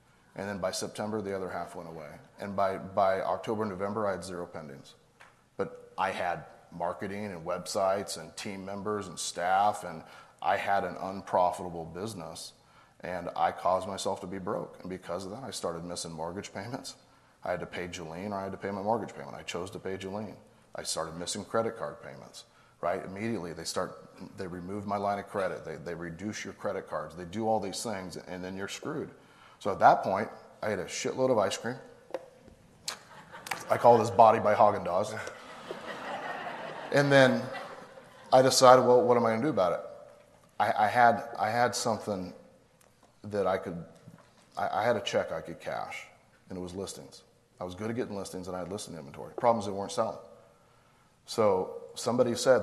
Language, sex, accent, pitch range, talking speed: English, male, American, 90-115 Hz, 195 wpm